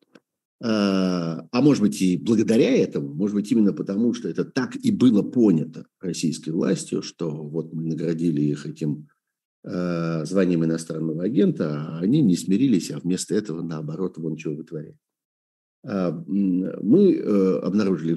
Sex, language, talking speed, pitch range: male, Russian, 130 wpm, 80-110 Hz